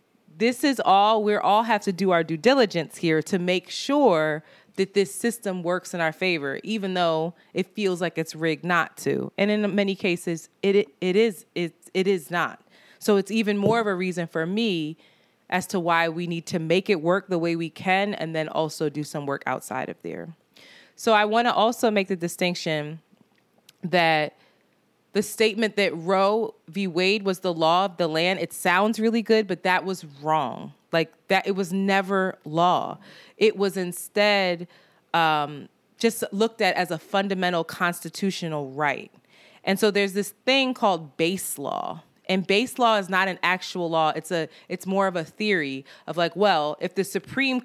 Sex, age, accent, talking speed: female, 20-39, American, 185 wpm